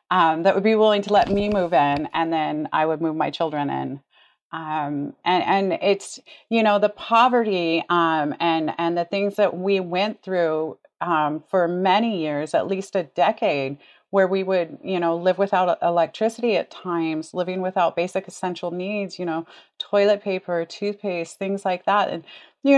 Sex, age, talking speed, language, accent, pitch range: female, 30-49, 180 wpm, English, American, 160-200 Hz